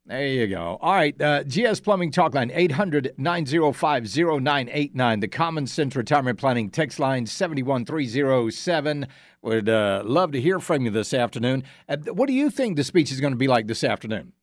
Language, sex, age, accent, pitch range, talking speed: English, male, 50-69, American, 120-185 Hz, 180 wpm